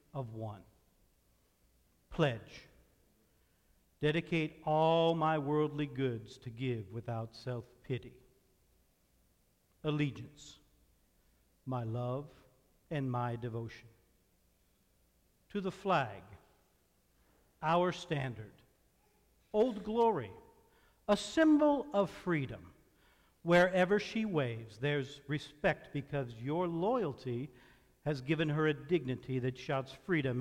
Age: 50-69